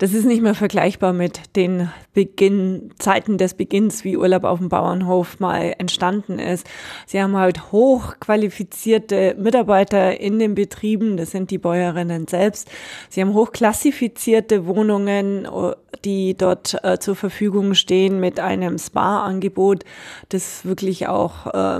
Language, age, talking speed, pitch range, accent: German, 20-39, 135 wpm, 180-200 Hz, German